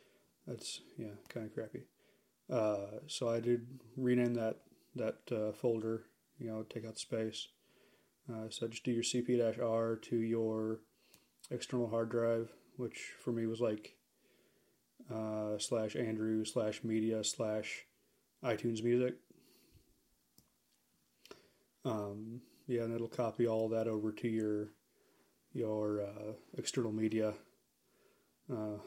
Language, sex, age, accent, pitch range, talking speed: English, male, 30-49, American, 110-120 Hz, 125 wpm